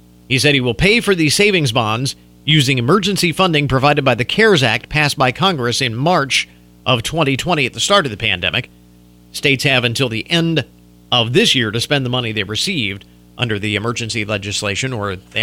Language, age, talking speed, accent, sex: English, 50-69, 195 wpm, American, male